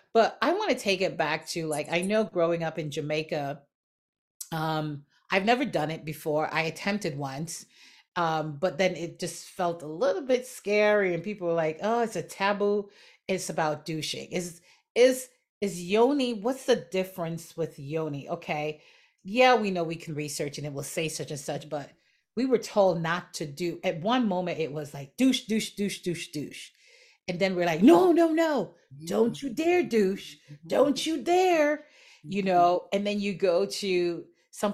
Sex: female